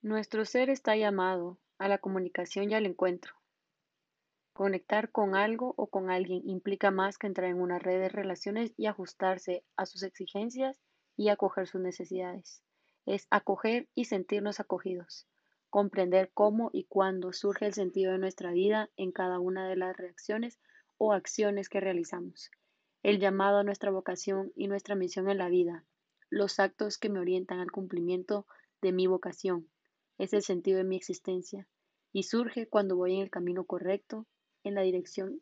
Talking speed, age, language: 165 wpm, 20-39, Spanish